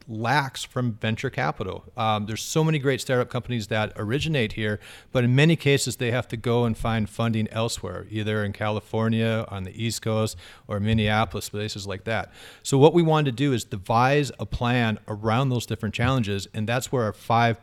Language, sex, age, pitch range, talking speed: English, male, 40-59, 105-130 Hz, 195 wpm